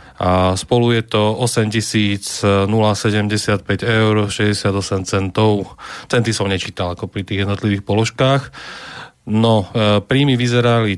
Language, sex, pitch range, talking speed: Slovak, male, 105-115 Hz, 110 wpm